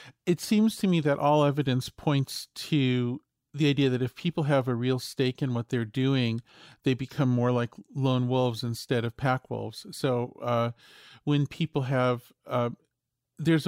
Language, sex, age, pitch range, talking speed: English, male, 40-59, 120-140 Hz, 165 wpm